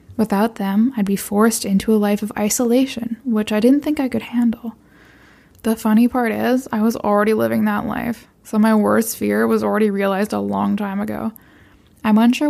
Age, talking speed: 10-29, 190 wpm